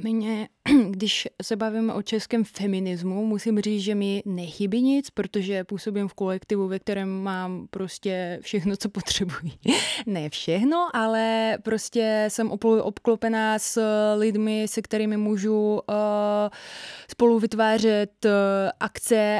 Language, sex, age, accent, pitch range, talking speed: Czech, female, 20-39, native, 195-220 Hz, 125 wpm